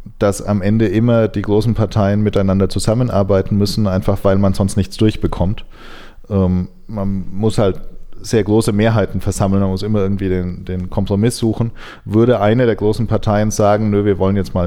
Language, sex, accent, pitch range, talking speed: German, male, German, 95-110 Hz, 170 wpm